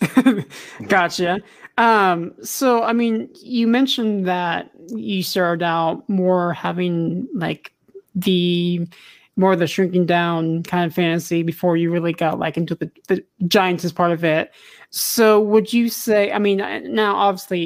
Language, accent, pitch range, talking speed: English, American, 170-205 Hz, 150 wpm